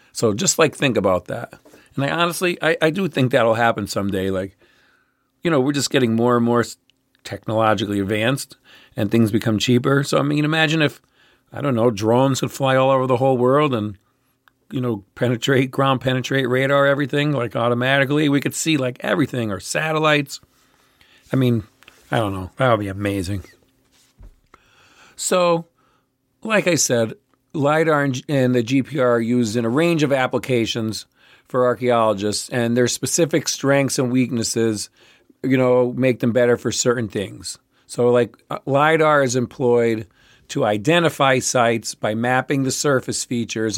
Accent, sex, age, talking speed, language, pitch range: American, male, 50-69, 160 wpm, English, 115-135 Hz